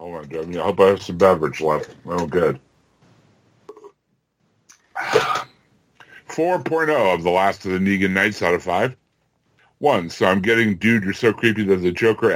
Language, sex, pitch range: English, female, 100-125 Hz